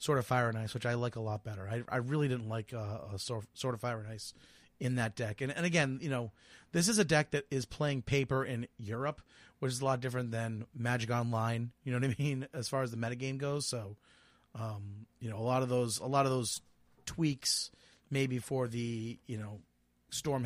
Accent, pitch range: American, 115-140 Hz